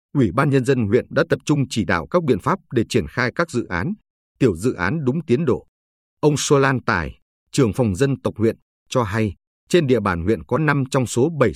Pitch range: 100-140 Hz